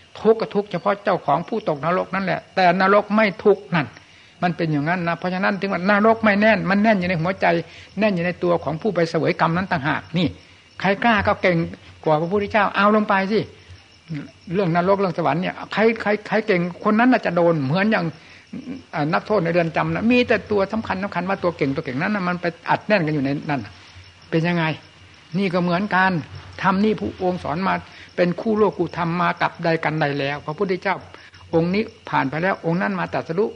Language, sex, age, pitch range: Thai, male, 60-79, 160-205 Hz